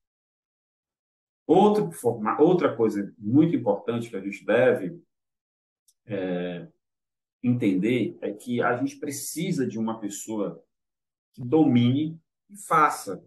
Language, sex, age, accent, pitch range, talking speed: Portuguese, male, 40-59, Brazilian, 110-150 Hz, 100 wpm